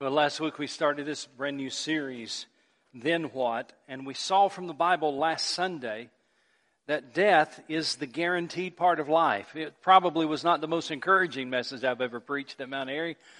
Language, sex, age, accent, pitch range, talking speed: English, male, 40-59, American, 150-180 Hz, 185 wpm